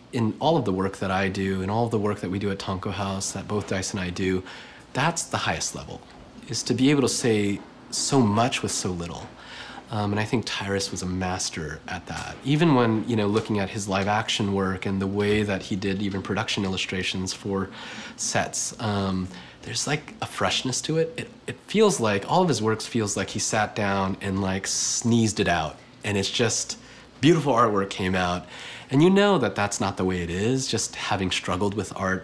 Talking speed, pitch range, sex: 220 wpm, 95-120 Hz, male